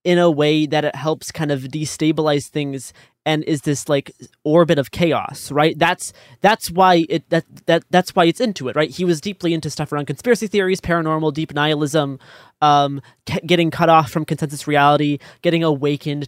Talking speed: 185 wpm